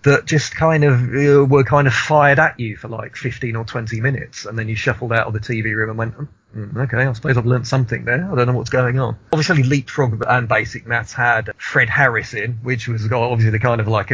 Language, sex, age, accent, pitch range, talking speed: English, male, 40-59, British, 115-140 Hz, 240 wpm